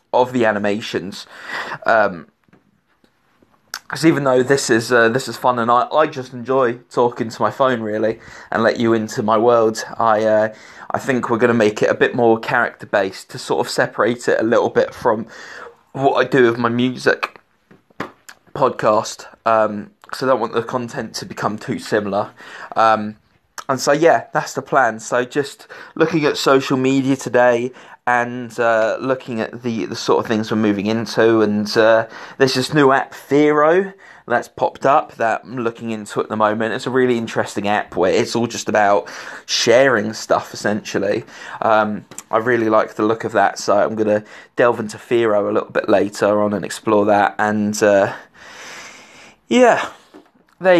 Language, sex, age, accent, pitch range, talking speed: English, male, 20-39, British, 110-125 Hz, 180 wpm